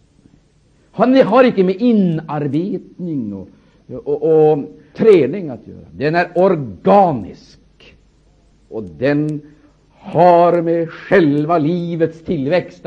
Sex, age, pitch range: male, 60-79, 120-170 Hz